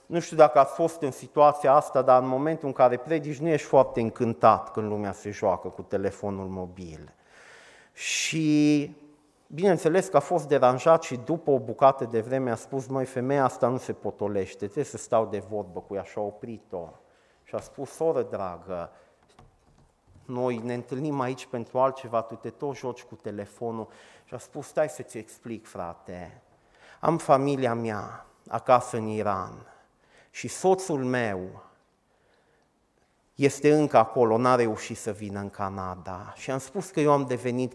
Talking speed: 165 wpm